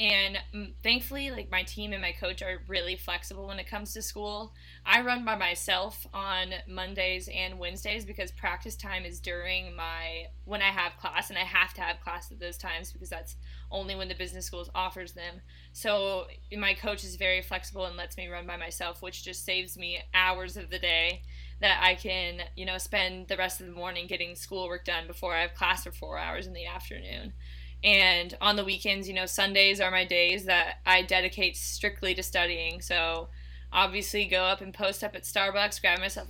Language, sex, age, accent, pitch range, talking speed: English, female, 20-39, American, 175-200 Hz, 205 wpm